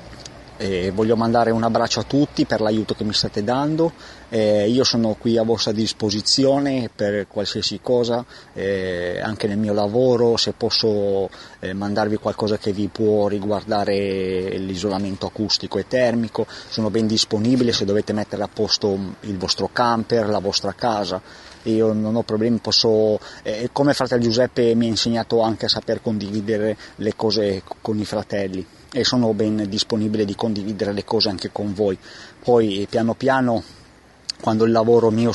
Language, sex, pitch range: Italian, male, 105-115 Hz